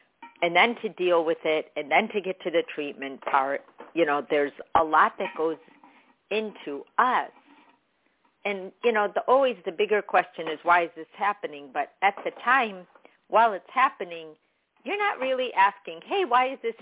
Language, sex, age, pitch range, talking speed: English, female, 50-69, 155-200 Hz, 180 wpm